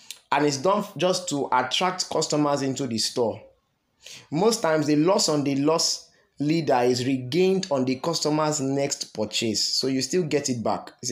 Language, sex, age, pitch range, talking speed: English, male, 20-39, 125-160 Hz, 175 wpm